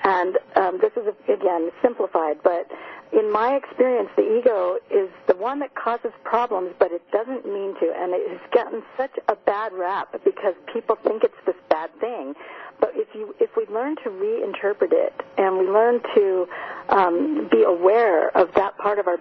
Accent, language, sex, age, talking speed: American, English, female, 50-69, 185 wpm